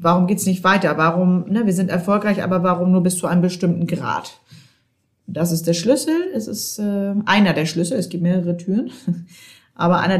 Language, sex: German, female